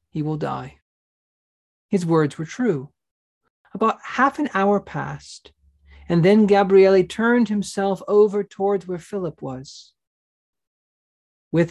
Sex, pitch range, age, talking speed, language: male, 150-190 Hz, 40-59, 120 wpm, English